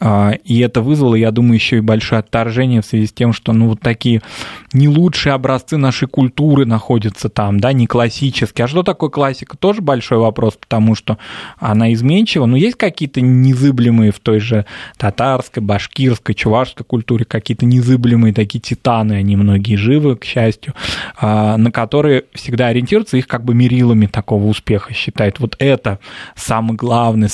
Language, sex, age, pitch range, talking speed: Russian, male, 20-39, 110-130 Hz, 160 wpm